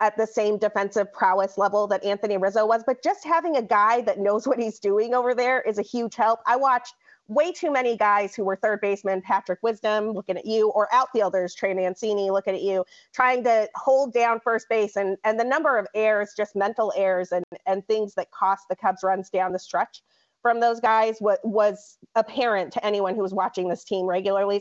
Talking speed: 215 wpm